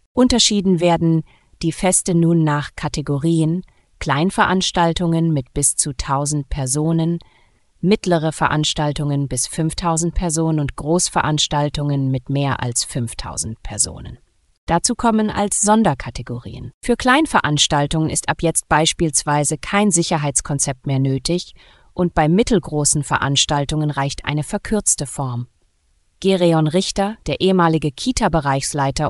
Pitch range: 145-180 Hz